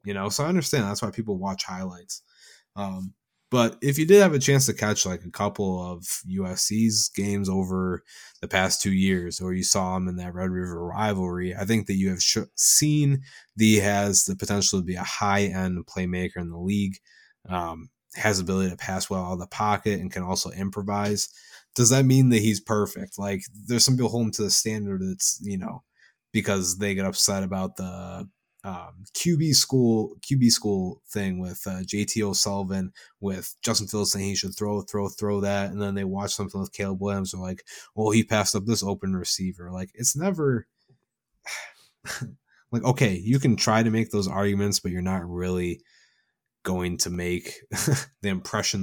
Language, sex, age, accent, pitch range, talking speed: English, male, 20-39, American, 95-105 Hz, 190 wpm